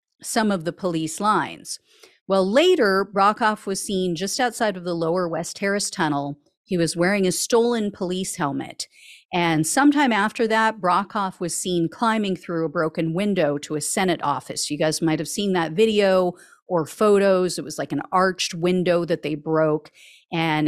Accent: American